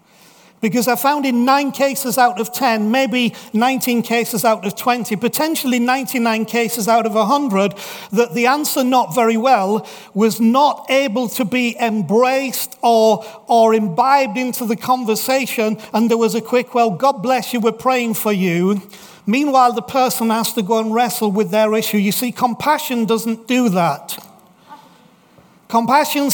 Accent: British